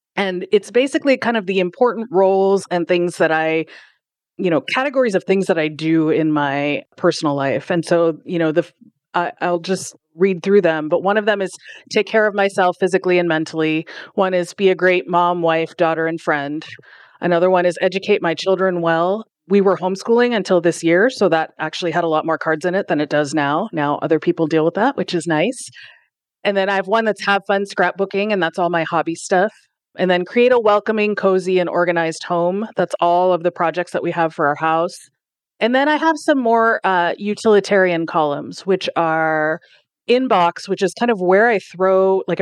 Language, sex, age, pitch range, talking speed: English, female, 30-49, 160-195 Hz, 210 wpm